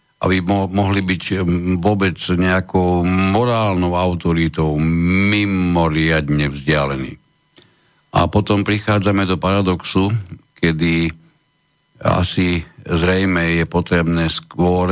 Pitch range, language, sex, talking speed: 85-100 Hz, Slovak, male, 85 wpm